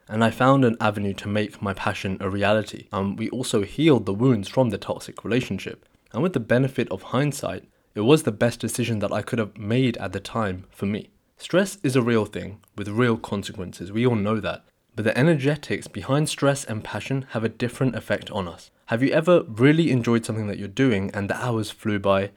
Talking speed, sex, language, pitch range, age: 215 wpm, male, English, 105-135 Hz, 20-39